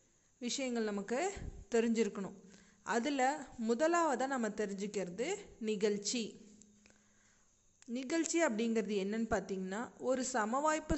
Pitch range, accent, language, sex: 210-250 Hz, native, Tamil, female